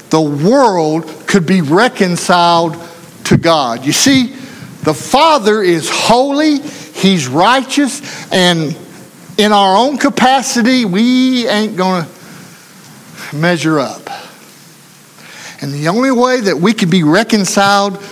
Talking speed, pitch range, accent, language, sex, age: 115 wpm, 160-215 Hz, American, English, male, 60-79